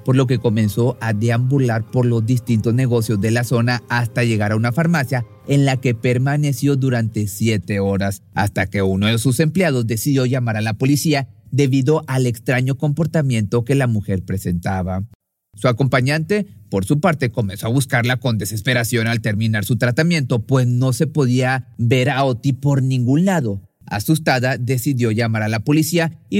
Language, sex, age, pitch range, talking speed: Spanish, male, 40-59, 110-140 Hz, 170 wpm